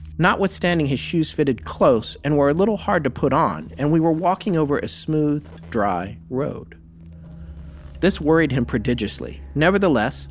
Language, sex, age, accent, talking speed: English, male, 40-59, American, 155 wpm